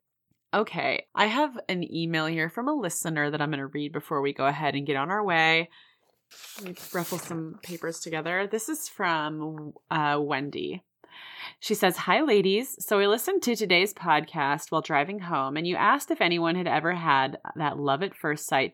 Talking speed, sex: 190 wpm, female